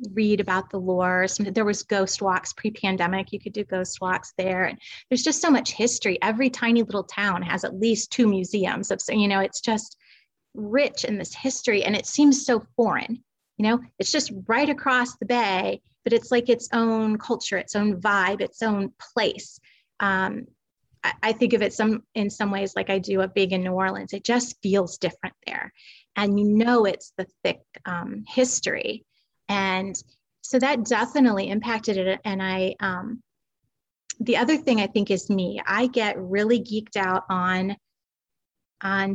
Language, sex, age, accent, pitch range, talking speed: English, female, 30-49, American, 195-240 Hz, 180 wpm